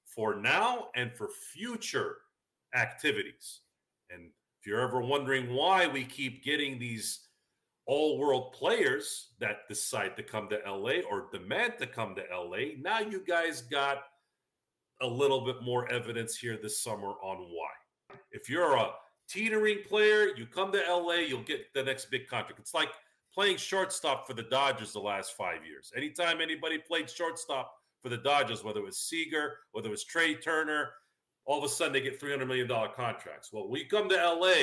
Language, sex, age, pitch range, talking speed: English, male, 40-59, 120-165 Hz, 175 wpm